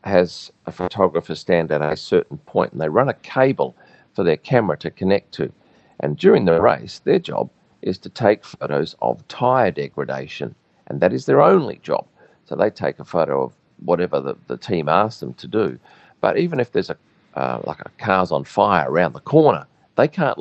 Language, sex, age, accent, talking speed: English, male, 40-59, Australian, 200 wpm